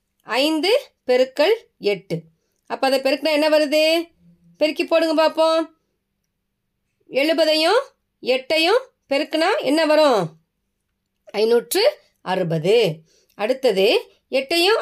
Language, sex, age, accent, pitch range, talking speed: Tamil, female, 20-39, native, 205-320 Hz, 80 wpm